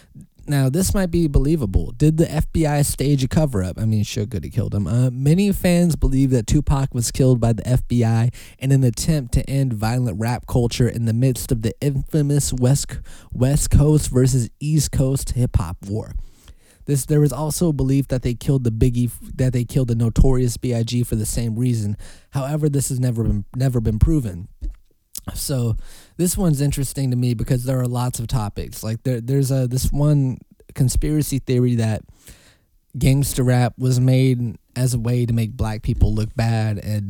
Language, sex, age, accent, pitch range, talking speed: English, male, 20-39, American, 110-135 Hz, 190 wpm